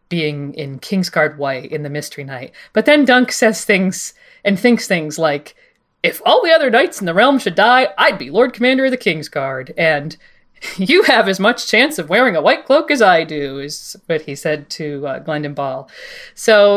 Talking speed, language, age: 205 wpm, English, 40-59